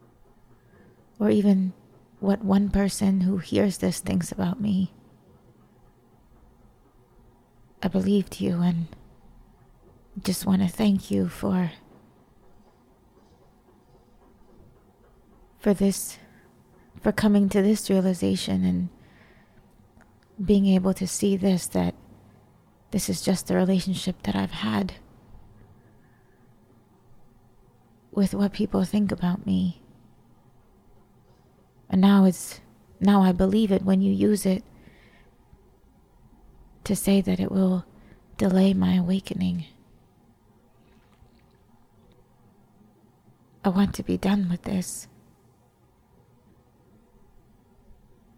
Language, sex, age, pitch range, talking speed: English, female, 30-49, 120-195 Hz, 90 wpm